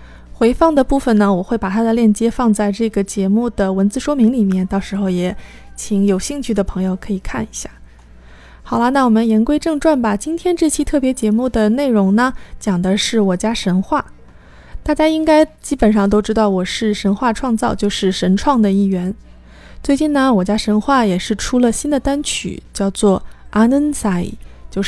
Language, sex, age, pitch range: Chinese, female, 20-39, 195-255 Hz